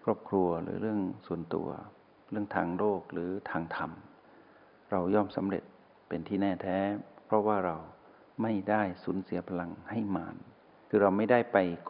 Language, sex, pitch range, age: Thai, male, 90-110 Hz, 60-79